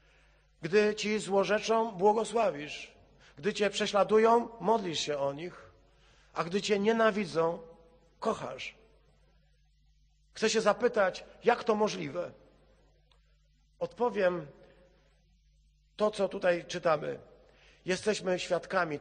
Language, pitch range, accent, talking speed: Polish, 160-215 Hz, native, 90 wpm